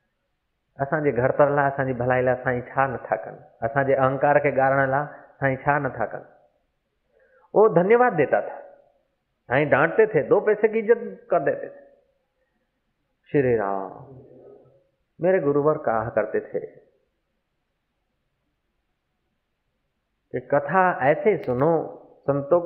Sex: male